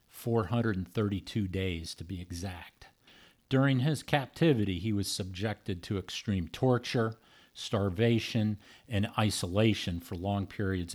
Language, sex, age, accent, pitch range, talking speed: English, male, 50-69, American, 95-120 Hz, 110 wpm